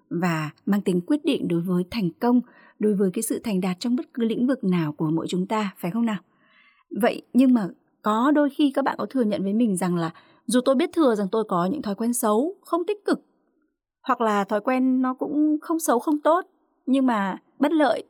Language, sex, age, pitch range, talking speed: Vietnamese, female, 20-39, 195-270 Hz, 235 wpm